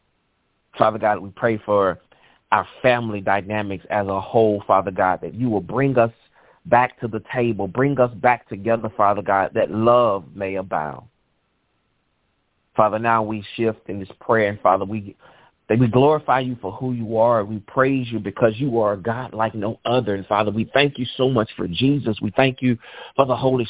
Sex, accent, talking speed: male, American, 185 wpm